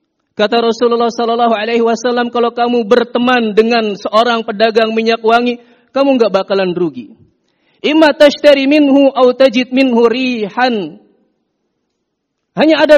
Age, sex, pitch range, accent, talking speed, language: 40-59, male, 230-275 Hz, native, 95 wpm, Indonesian